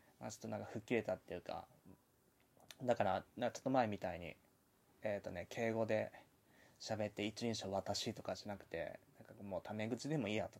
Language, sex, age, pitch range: Japanese, male, 20-39, 100-130 Hz